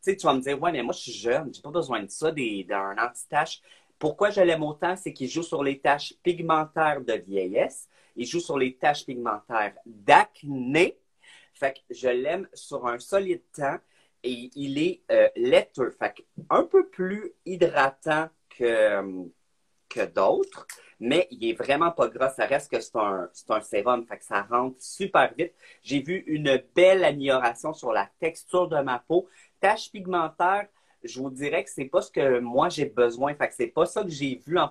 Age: 40-59